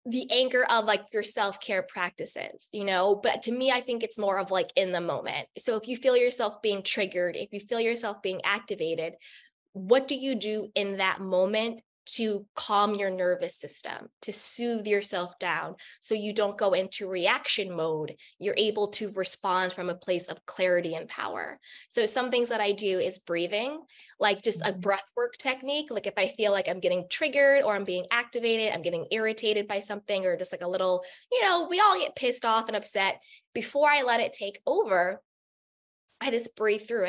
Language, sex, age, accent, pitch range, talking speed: English, female, 20-39, American, 190-240 Hz, 200 wpm